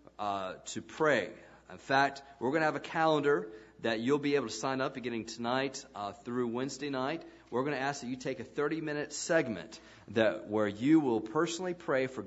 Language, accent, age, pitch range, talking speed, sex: English, American, 40-59, 110-145 Hz, 200 wpm, male